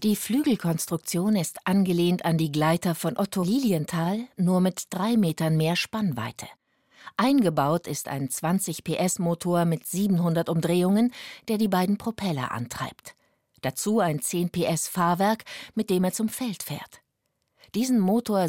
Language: German